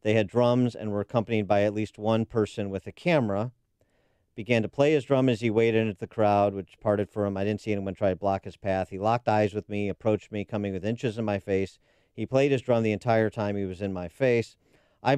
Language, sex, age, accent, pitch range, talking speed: English, male, 40-59, American, 95-115 Hz, 255 wpm